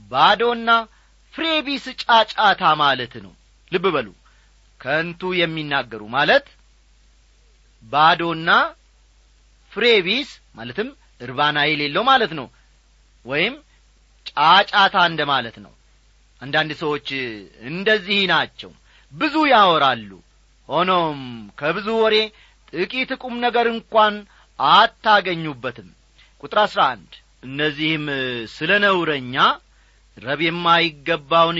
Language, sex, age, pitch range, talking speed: Amharic, male, 40-59, 140-215 Hz, 80 wpm